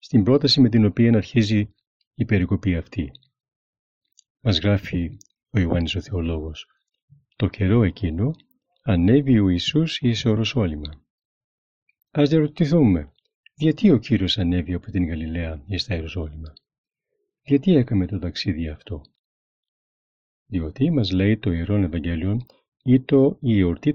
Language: Greek